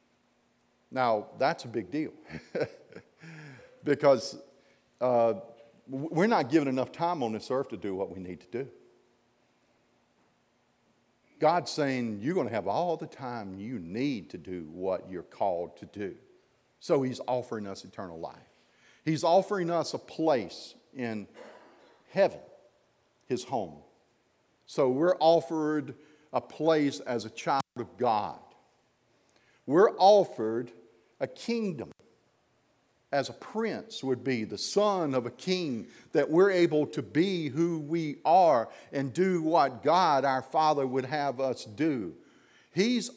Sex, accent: male, American